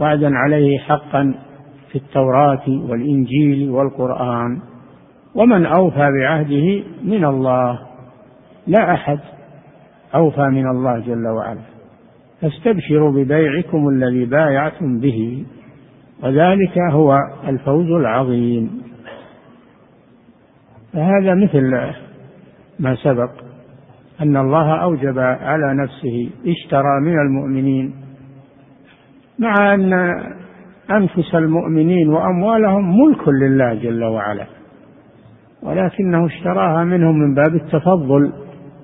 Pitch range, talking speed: 130-165 Hz, 85 wpm